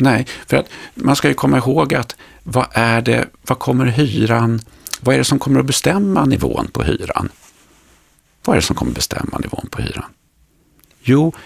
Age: 50-69